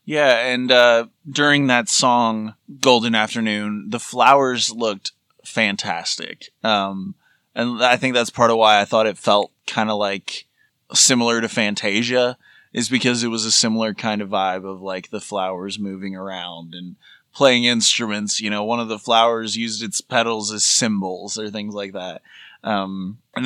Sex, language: male, English